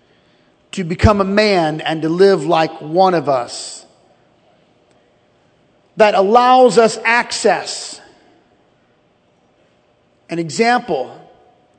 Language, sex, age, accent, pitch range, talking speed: English, male, 40-59, American, 160-220 Hz, 85 wpm